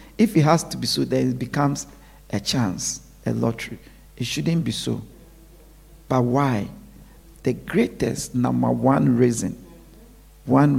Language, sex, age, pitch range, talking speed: English, male, 50-69, 125-175 Hz, 140 wpm